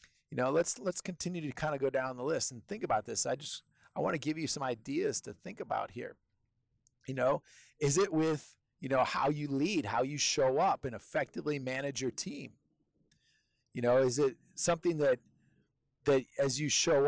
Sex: male